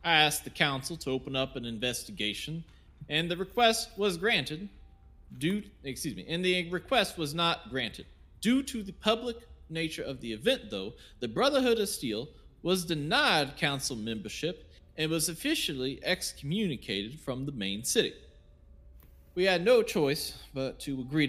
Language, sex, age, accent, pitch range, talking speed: English, male, 30-49, American, 125-195 Hz, 155 wpm